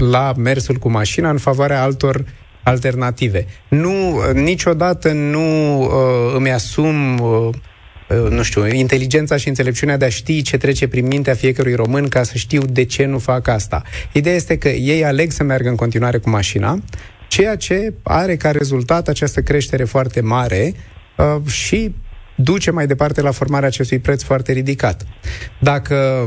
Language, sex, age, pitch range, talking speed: Romanian, male, 30-49, 115-145 Hz, 160 wpm